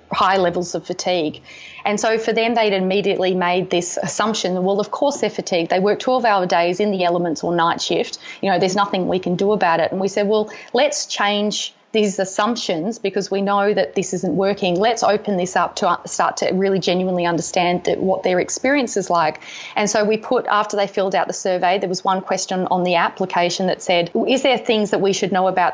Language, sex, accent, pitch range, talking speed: English, female, Australian, 185-210 Hz, 225 wpm